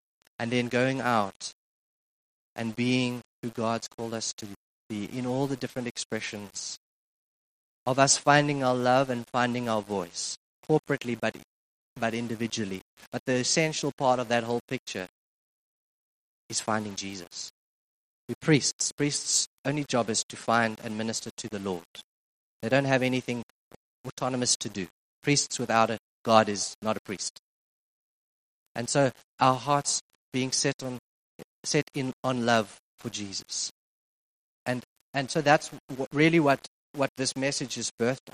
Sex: male